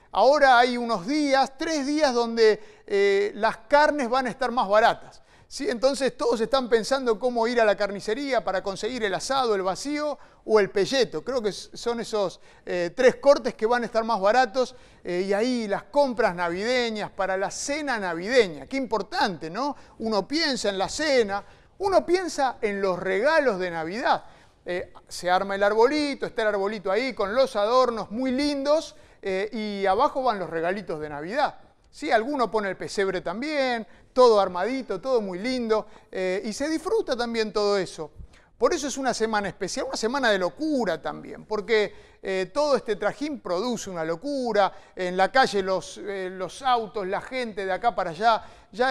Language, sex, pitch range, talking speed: Spanish, male, 195-260 Hz, 175 wpm